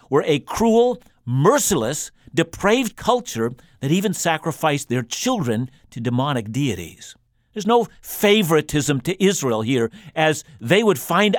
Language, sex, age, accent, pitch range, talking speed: English, male, 50-69, American, 130-185 Hz, 125 wpm